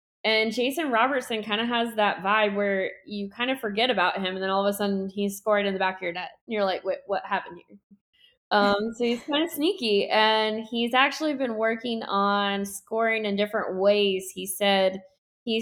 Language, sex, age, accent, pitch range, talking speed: English, female, 20-39, American, 200-240 Hz, 210 wpm